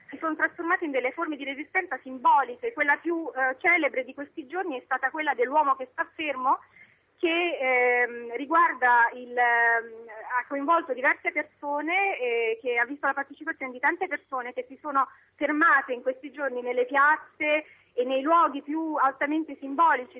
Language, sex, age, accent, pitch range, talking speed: Italian, female, 30-49, native, 260-330 Hz, 170 wpm